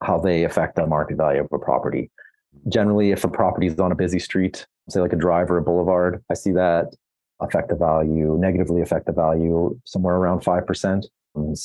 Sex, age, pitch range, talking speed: male, 30-49, 80-90 Hz, 195 wpm